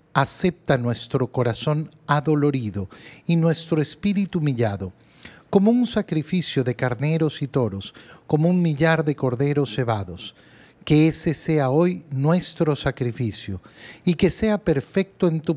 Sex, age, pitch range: male, 40-59, 125-165 Hz